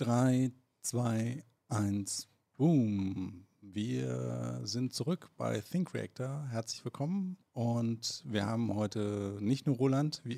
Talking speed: 115 wpm